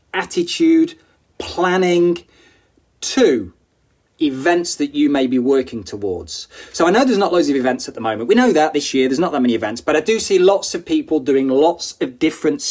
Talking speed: 200 wpm